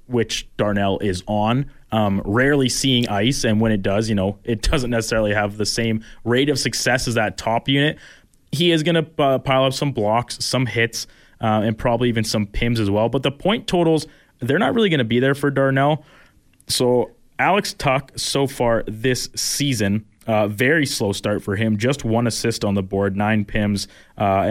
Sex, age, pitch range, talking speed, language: male, 20-39, 105-130 Hz, 195 wpm, English